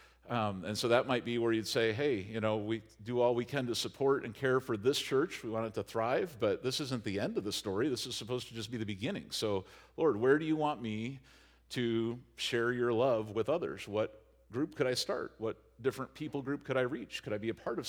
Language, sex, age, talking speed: English, male, 50-69, 255 wpm